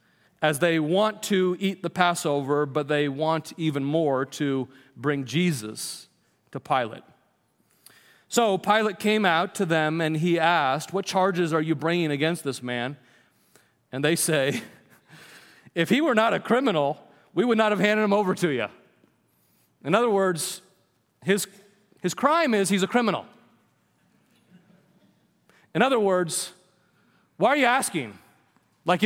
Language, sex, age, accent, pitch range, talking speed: English, male, 40-59, American, 170-220 Hz, 145 wpm